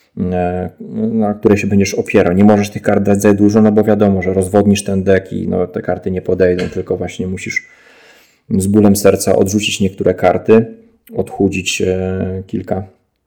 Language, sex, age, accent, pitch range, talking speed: Polish, male, 20-39, native, 95-105 Hz, 165 wpm